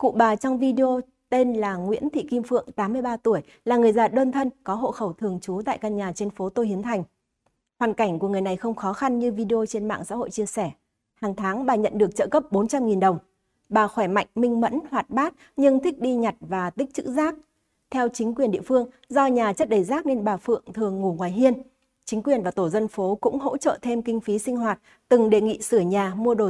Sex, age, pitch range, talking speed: female, 20-39, 195-255 Hz, 245 wpm